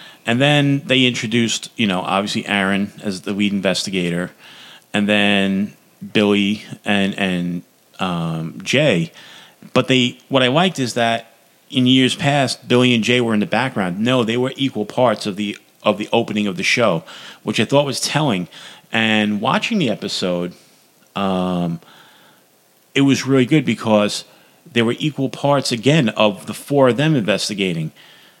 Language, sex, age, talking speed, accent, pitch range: English, male, 40-59, 160 wpm, American, 100-125 Hz